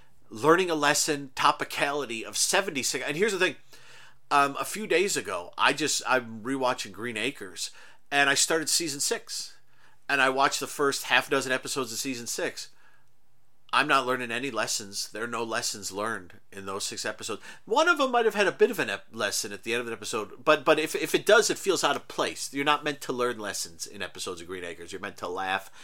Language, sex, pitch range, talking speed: English, male, 120-150 Hz, 220 wpm